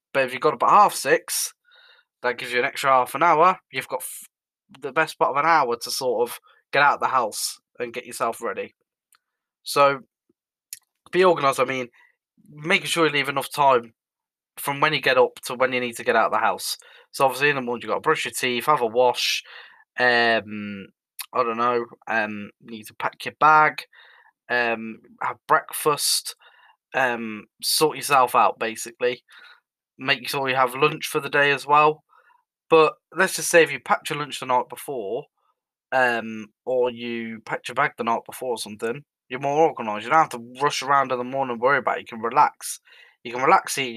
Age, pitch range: 10-29, 120-155 Hz